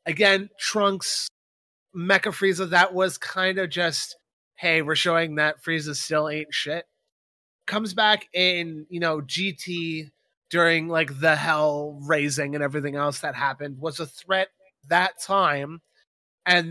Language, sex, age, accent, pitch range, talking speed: English, male, 20-39, American, 150-180 Hz, 140 wpm